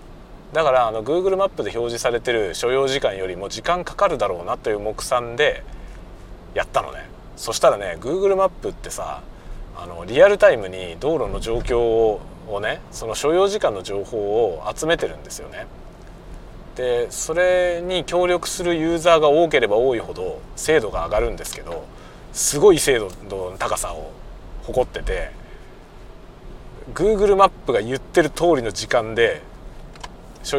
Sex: male